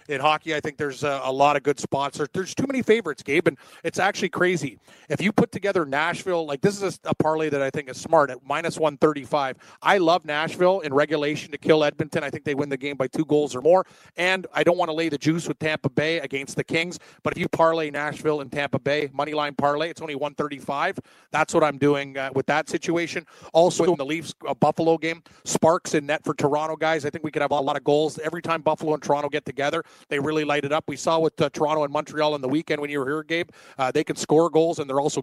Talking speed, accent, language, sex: 250 wpm, American, English, male